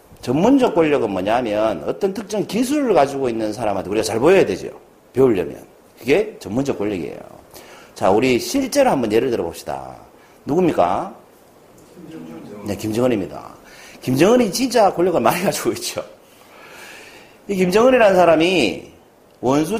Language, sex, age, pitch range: Korean, male, 40-59, 155-245 Hz